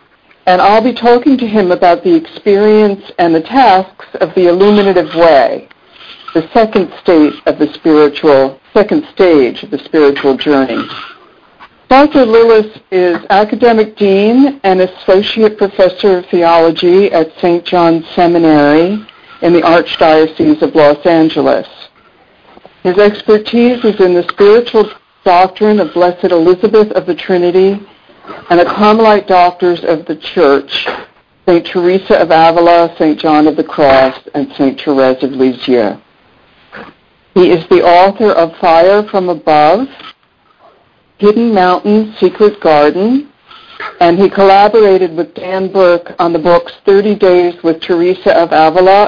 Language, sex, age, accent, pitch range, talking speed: English, female, 60-79, American, 165-210 Hz, 135 wpm